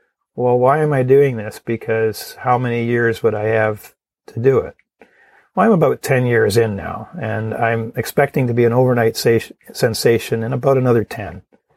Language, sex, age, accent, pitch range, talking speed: English, male, 50-69, American, 115-130 Hz, 185 wpm